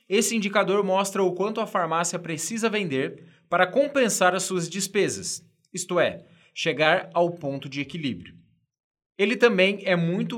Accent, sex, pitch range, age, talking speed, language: Brazilian, male, 155-205 Hz, 20-39, 145 wpm, Portuguese